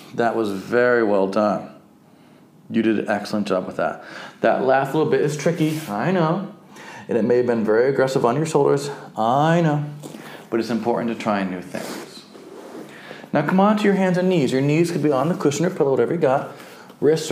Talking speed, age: 210 wpm, 30-49